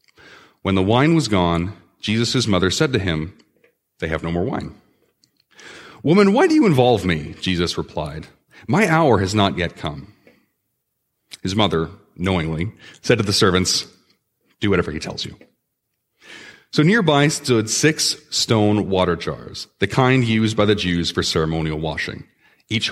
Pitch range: 90-130 Hz